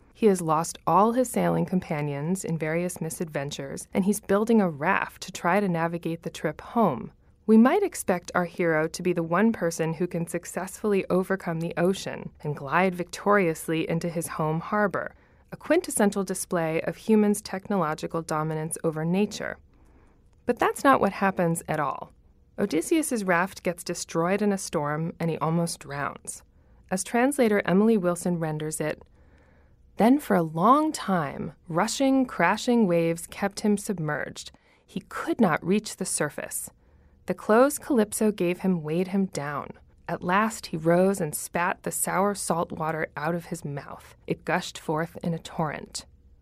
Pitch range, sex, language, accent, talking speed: 160-205 Hz, female, English, American, 160 wpm